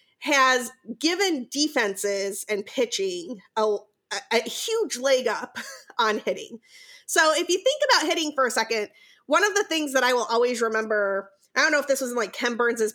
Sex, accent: female, American